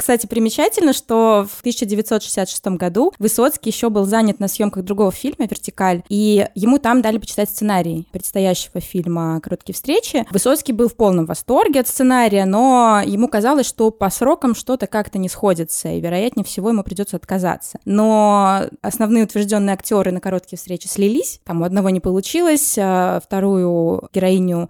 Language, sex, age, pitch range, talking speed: Russian, female, 20-39, 185-230 Hz, 155 wpm